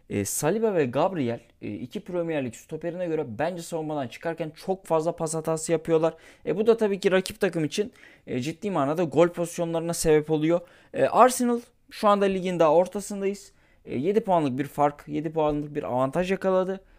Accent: native